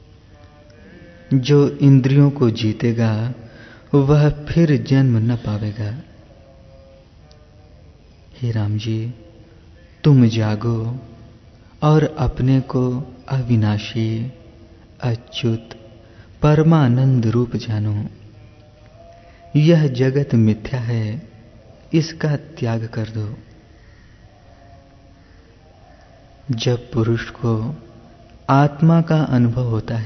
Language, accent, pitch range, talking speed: Hindi, native, 105-130 Hz, 75 wpm